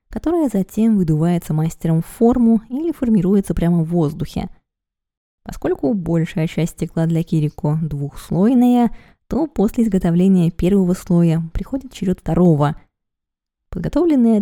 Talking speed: 110 wpm